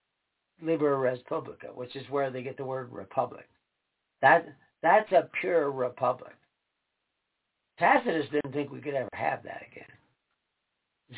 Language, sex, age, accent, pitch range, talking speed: English, male, 60-79, American, 130-220 Hz, 135 wpm